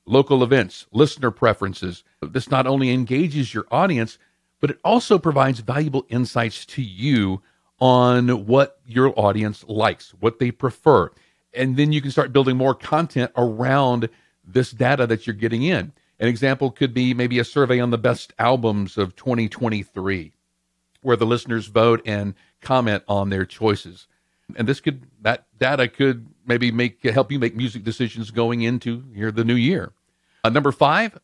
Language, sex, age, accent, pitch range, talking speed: English, male, 50-69, American, 110-135 Hz, 160 wpm